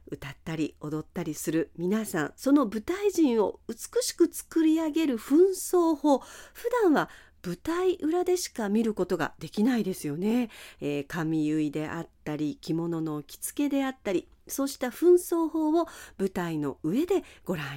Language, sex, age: Japanese, female, 50-69